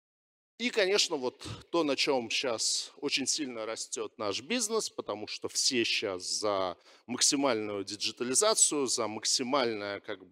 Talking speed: 120 wpm